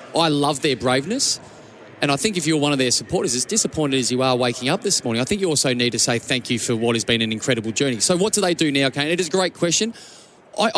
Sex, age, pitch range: male, 20-39, 130-165 Hz